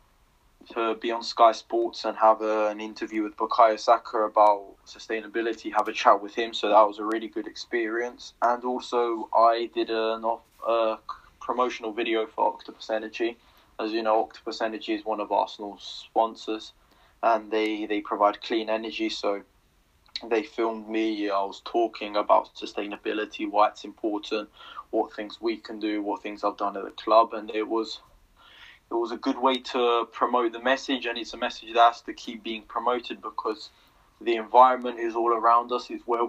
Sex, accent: male, British